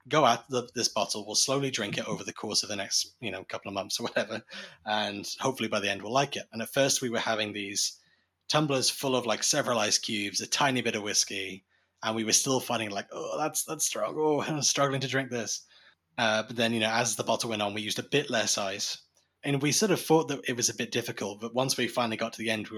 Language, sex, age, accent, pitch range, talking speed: English, male, 20-39, British, 105-130 Hz, 265 wpm